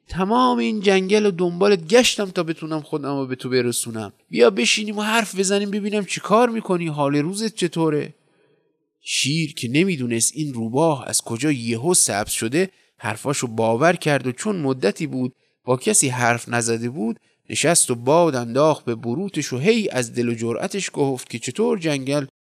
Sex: male